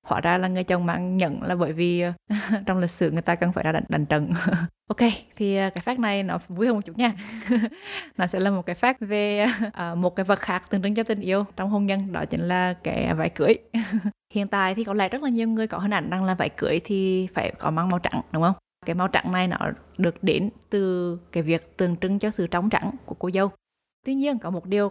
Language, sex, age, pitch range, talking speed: Vietnamese, female, 20-39, 175-205 Hz, 250 wpm